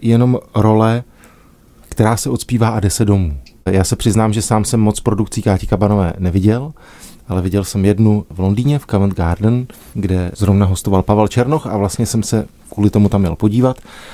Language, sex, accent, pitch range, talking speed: Czech, male, native, 100-125 Hz, 180 wpm